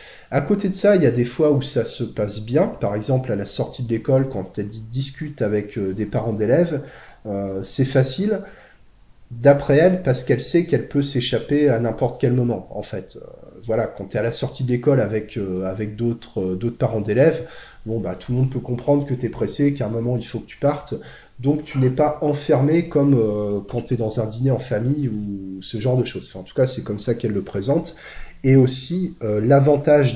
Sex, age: male, 30-49